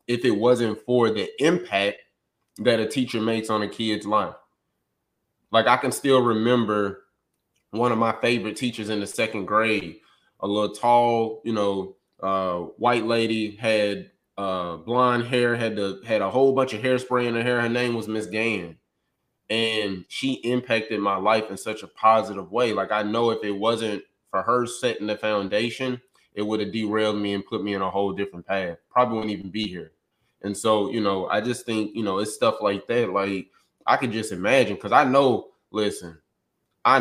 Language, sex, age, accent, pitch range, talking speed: English, male, 20-39, American, 100-115 Hz, 190 wpm